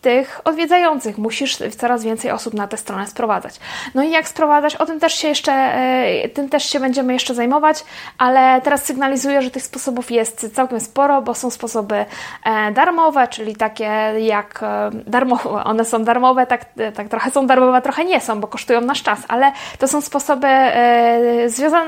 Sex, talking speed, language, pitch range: female, 165 wpm, Polish, 220-275 Hz